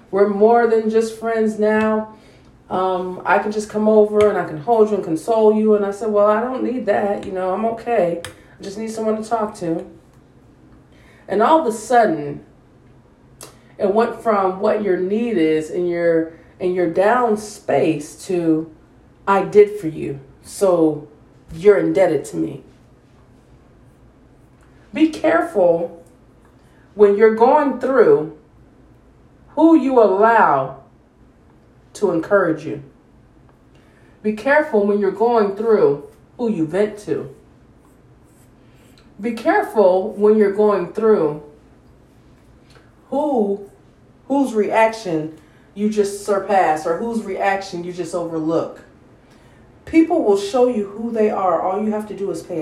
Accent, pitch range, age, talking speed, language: American, 170-225 Hz, 40-59, 135 wpm, English